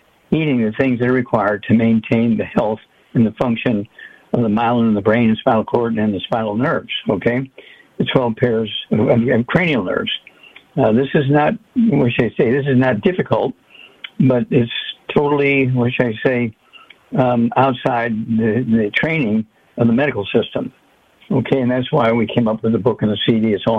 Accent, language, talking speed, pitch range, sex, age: American, English, 195 wpm, 115-135 Hz, male, 60-79